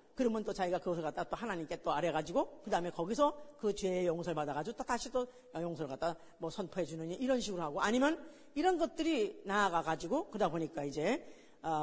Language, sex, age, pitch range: Korean, female, 40-59, 165-255 Hz